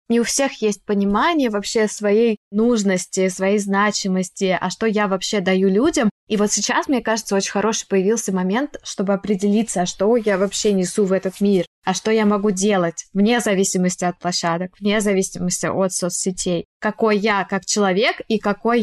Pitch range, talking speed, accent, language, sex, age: 195-230 Hz, 170 wpm, native, Russian, female, 20-39